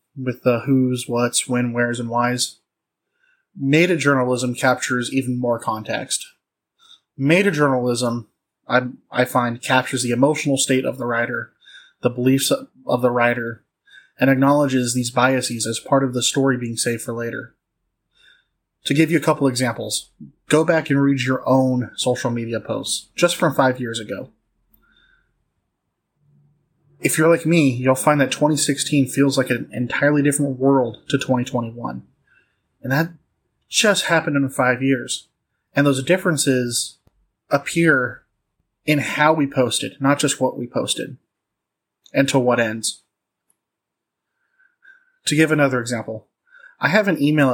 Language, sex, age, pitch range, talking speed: English, male, 20-39, 125-150 Hz, 140 wpm